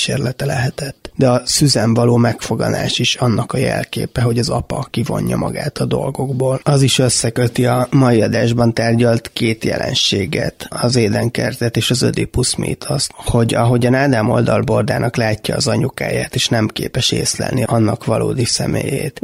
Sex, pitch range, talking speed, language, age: male, 115-130 Hz, 145 wpm, Hungarian, 20-39